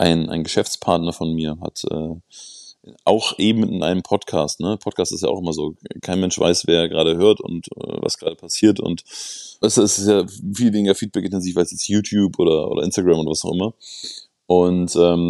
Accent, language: German, German